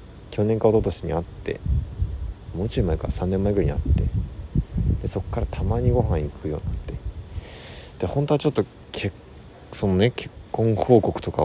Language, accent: Japanese, native